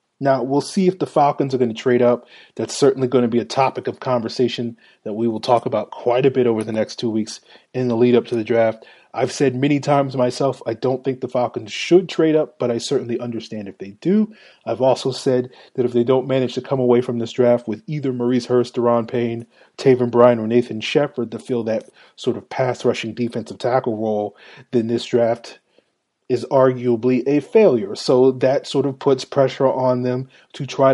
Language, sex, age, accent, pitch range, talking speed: English, male, 30-49, American, 120-135 Hz, 215 wpm